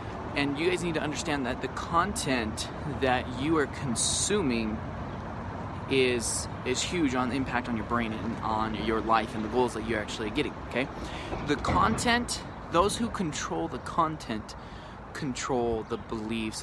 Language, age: English, 20-39